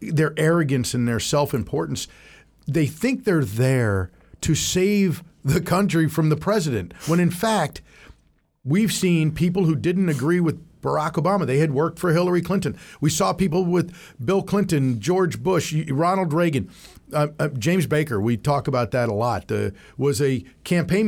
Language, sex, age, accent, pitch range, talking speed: English, male, 50-69, American, 135-185 Hz, 165 wpm